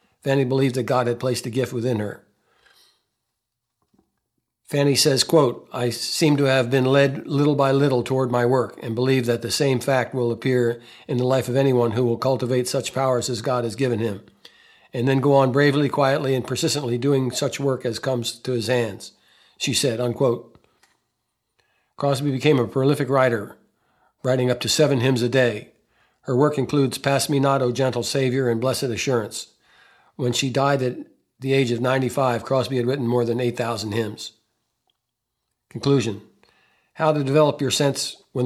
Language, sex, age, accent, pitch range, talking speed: English, male, 60-79, American, 120-140 Hz, 175 wpm